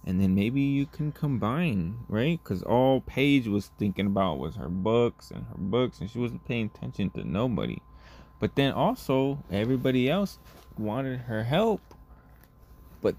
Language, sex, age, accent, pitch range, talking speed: English, male, 20-39, American, 95-140 Hz, 160 wpm